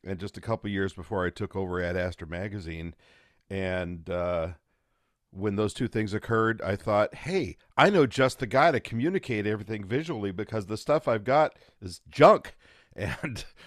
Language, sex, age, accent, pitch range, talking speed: English, male, 50-69, American, 90-115 Hz, 175 wpm